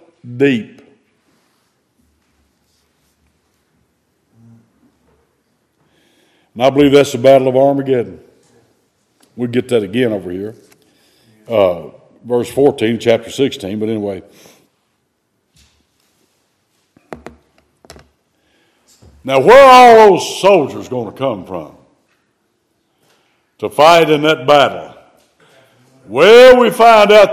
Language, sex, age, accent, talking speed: English, male, 60-79, American, 90 wpm